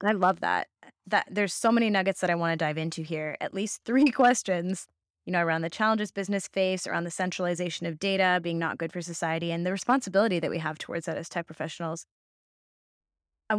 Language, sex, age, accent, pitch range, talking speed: English, female, 20-39, American, 170-205 Hz, 210 wpm